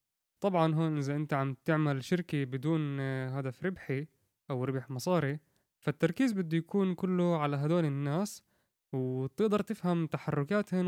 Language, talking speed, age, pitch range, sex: Arabic, 125 wpm, 20-39, 135-180 Hz, male